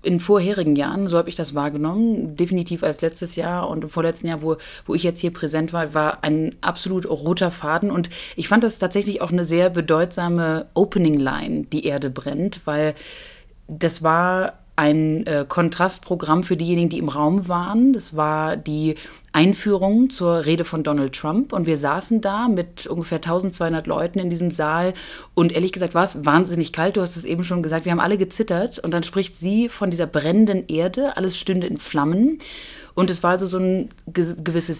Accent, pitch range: German, 165-195 Hz